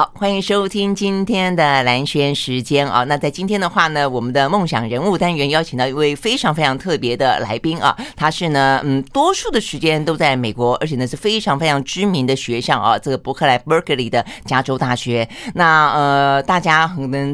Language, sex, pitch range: Chinese, female, 135-185 Hz